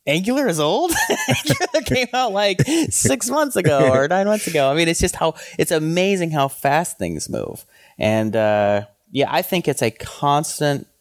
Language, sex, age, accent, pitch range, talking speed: English, male, 30-49, American, 105-140 Hz, 180 wpm